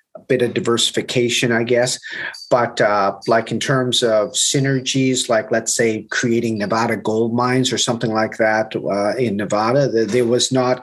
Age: 40-59